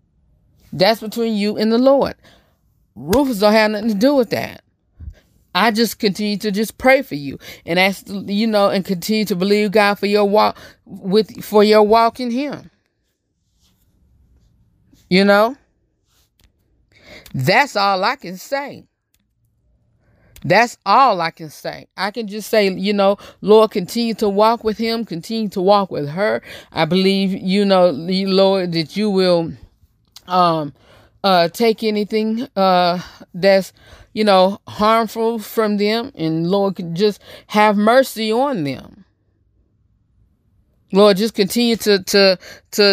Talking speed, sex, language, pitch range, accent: 140 wpm, female, English, 165-220 Hz, American